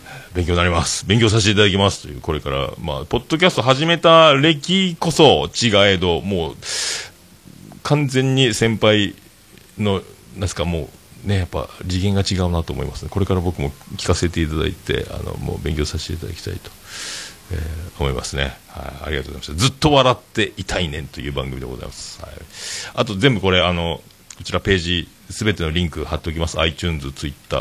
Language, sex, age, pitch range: Japanese, male, 40-59, 80-105 Hz